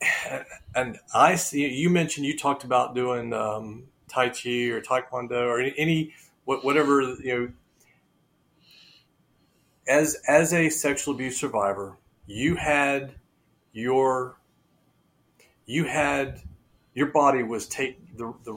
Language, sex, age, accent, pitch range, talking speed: English, male, 40-59, American, 115-150 Hz, 115 wpm